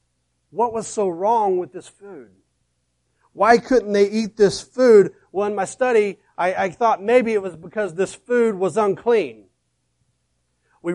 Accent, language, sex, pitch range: American, English, male, 155-220 Hz